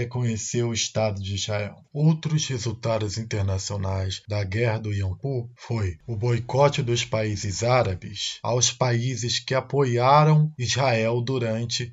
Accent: Brazilian